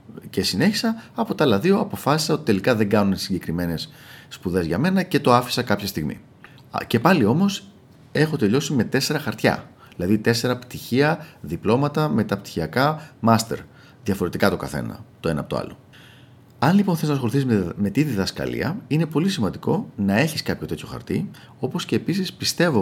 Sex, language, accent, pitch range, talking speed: male, Greek, native, 100-145 Hz, 165 wpm